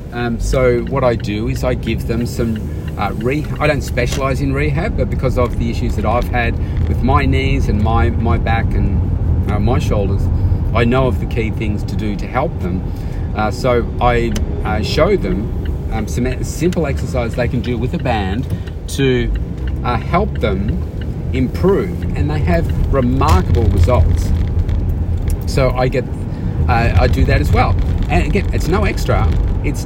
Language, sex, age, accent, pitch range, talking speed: English, male, 40-59, Australian, 85-115 Hz, 175 wpm